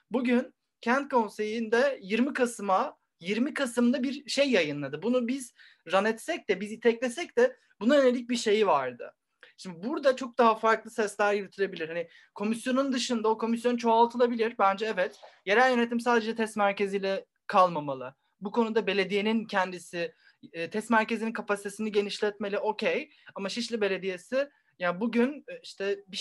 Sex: male